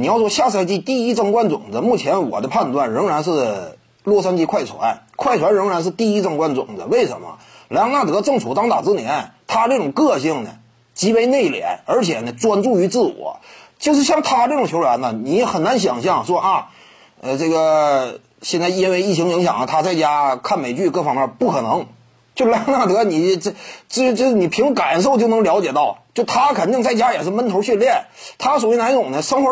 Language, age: Chinese, 30-49